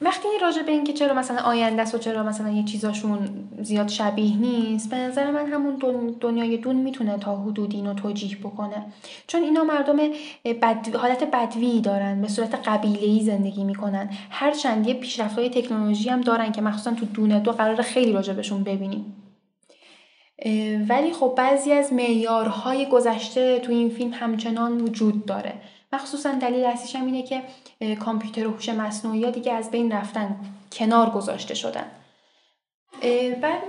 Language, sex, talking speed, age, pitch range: Persian, female, 150 wpm, 10-29, 210-255 Hz